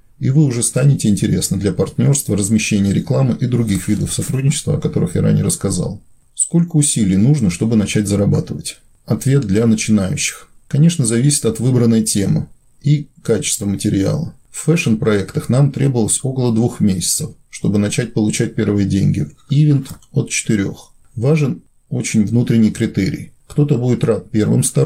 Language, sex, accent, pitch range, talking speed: Russian, male, native, 105-145 Hz, 140 wpm